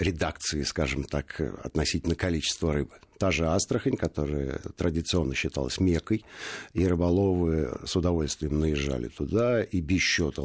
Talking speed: 125 wpm